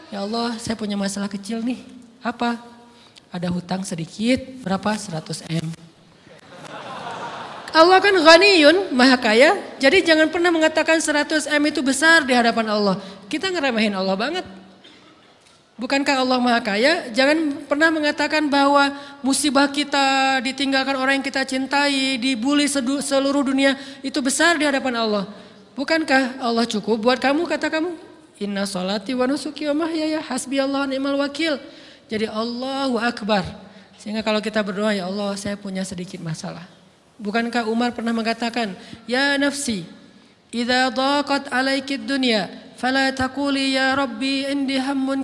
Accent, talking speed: native, 130 wpm